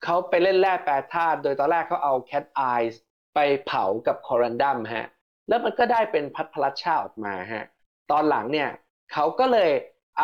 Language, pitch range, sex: Thai, 125-190 Hz, male